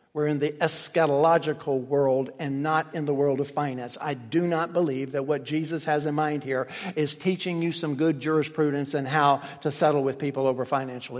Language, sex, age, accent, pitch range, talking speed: English, male, 50-69, American, 140-170 Hz, 200 wpm